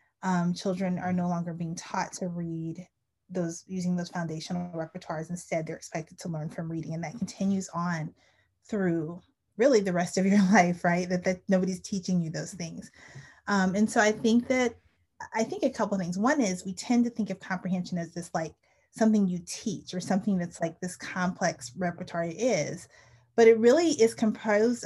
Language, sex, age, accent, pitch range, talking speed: English, female, 20-39, American, 170-195 Hz, 190 wpm